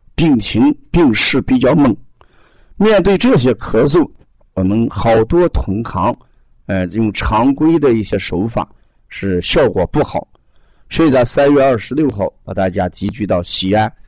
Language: Chinese